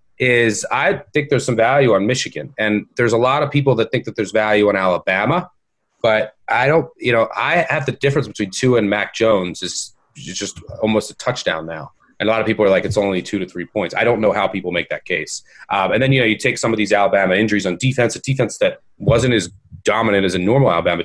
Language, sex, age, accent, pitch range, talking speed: English, male, 30-49, American, 100-130 Hz, 245 wpm